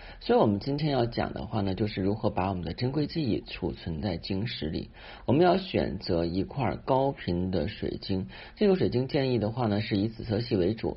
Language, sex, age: Chinese, male, 50-69